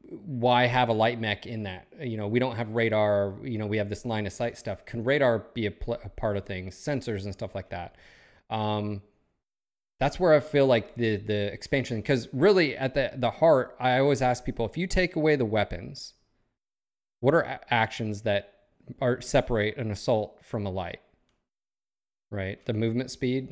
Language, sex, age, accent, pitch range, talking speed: English, male, 30-49, American, 105-125 Hz, 190 wpm